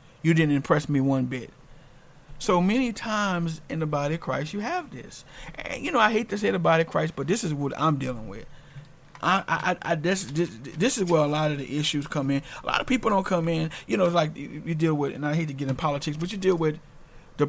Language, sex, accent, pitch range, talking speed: English, male, American, 140-185 Hz, 260 wpm